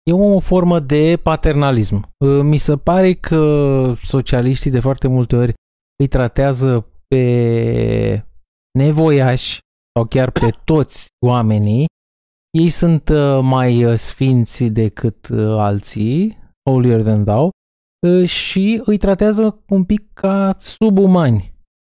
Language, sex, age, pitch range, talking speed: Romanian, male, 20-39, 120-180 Hz, 105 wpm